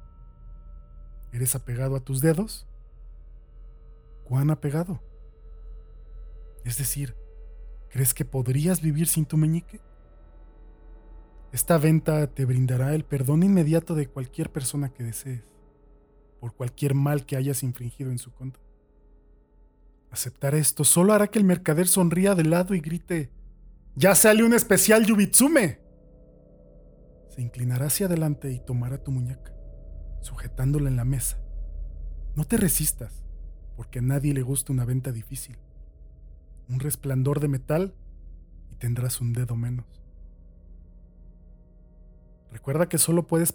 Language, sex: Spanish, male